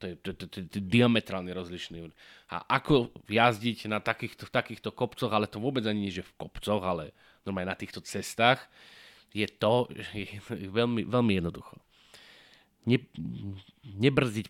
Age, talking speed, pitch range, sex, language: 30-49, 135 wpm, 100-130 Hz, male, Slovak